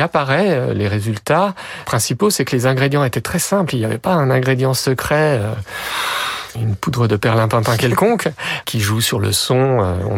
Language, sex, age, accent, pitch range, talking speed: French, male, 40-59, French, 115-160 Hz, 170 wpm